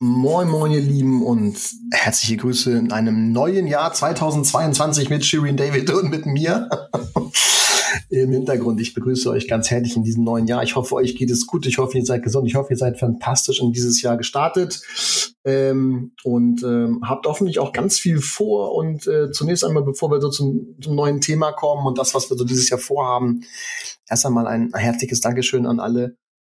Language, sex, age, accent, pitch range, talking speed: German, male, 30-49, German, 120-145 Hz, 195 wpm